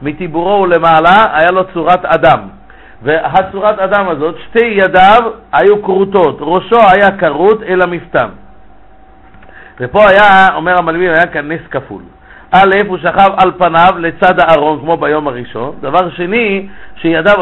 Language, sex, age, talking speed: Hebrew, male, 50-69, 135 wpm